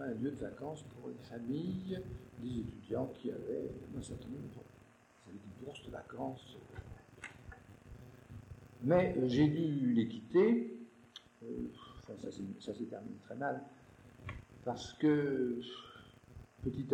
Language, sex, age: English, male, 50-69